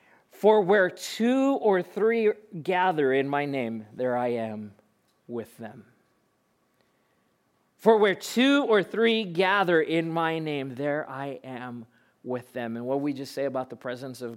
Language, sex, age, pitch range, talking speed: English, male, 40-59, 180-225 Hz, 155 wpm